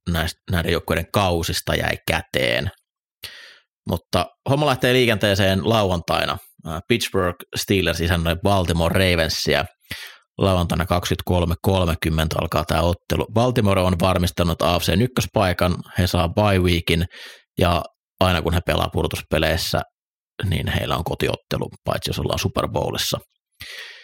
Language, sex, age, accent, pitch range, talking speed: Finnish, male, 30-49, native, 85-105 Hz, 110 wpm